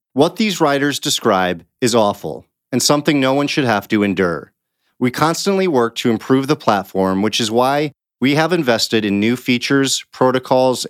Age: 40-59